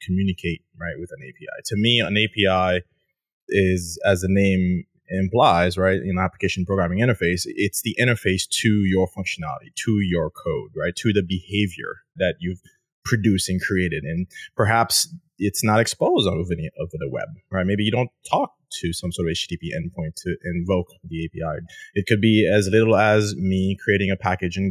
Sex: male